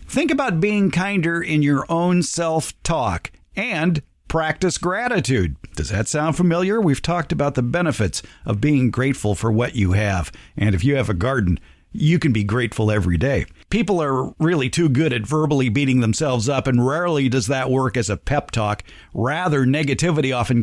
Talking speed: 175 wpm